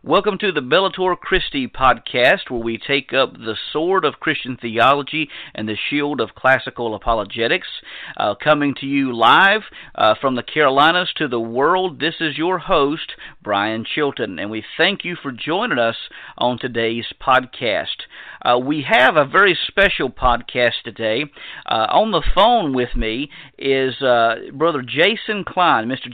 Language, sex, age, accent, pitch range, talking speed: English, male, 50-69, American, 120-160 Hz, 160 wpm